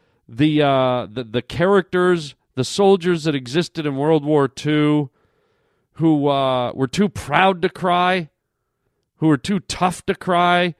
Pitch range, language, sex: 140-200 Hz, English, male